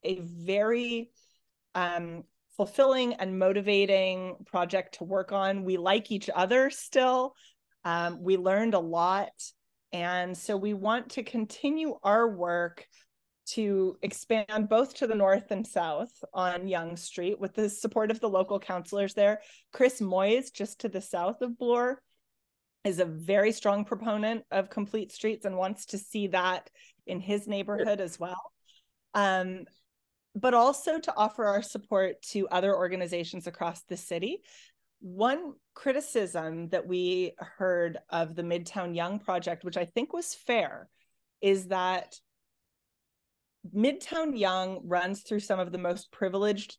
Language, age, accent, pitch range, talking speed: English, 30-49, American, 180-215 Hz, 145 wpm